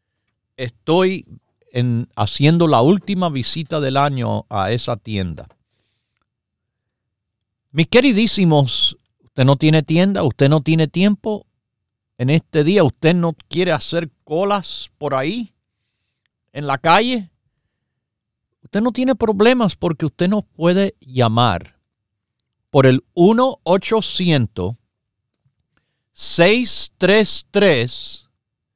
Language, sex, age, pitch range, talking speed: Spanish, male, 50-69, 115-185 Hz, 100 wpm